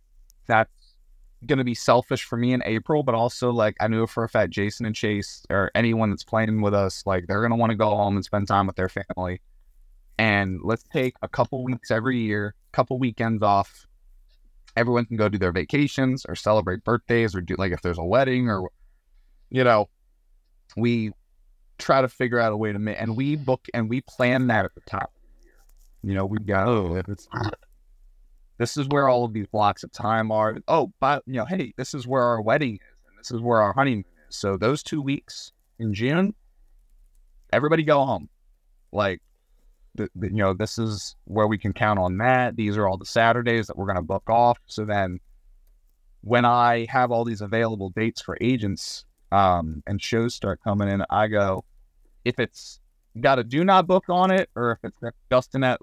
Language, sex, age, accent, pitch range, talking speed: English, male, 30-49, American, 100-120 Hz, 205 wpm